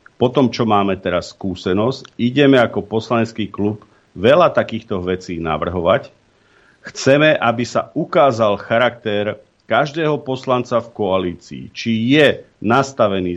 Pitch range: 110-140 Hz